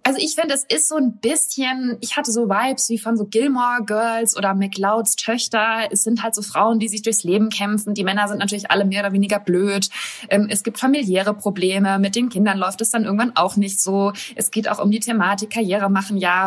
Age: 20-39